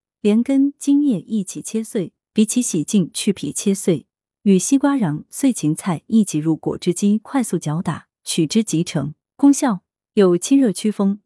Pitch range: 165-230 Hz